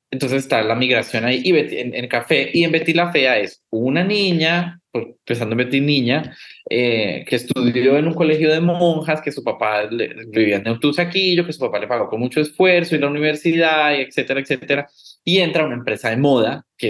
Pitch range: 115-150 Hz